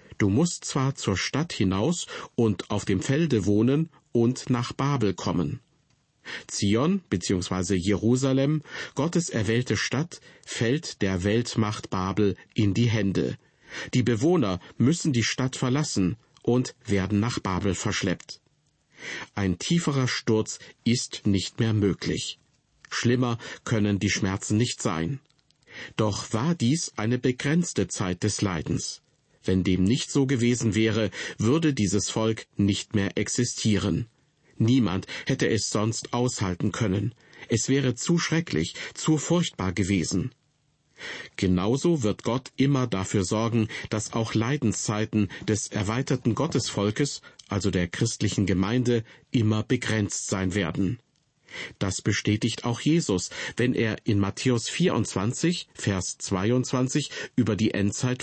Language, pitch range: German, 100-135 Hz